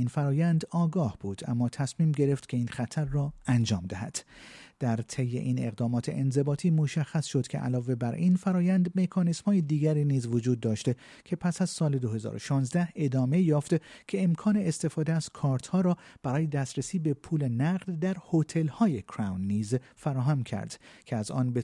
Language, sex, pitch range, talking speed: Persian, male, 120-160 Hz, 165 wpm